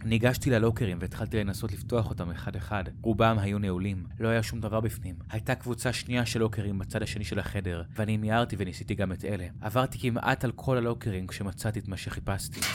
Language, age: Hebrew, 20-39